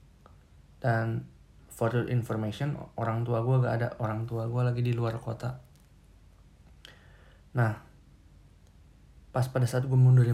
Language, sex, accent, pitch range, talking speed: Indonesian, male, native, 110-135 Hz, 120 wpm